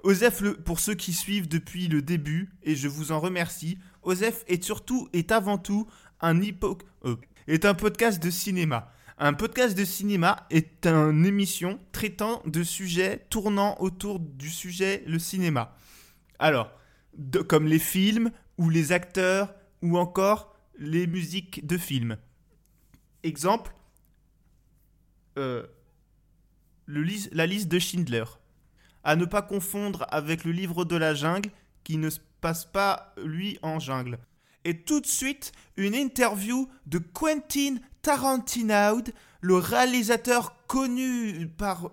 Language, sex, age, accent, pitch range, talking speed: French, male, 20-39, French, 165-215 Hz, 135 wpm